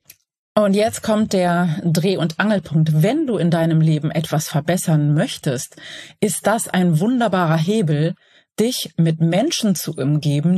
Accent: German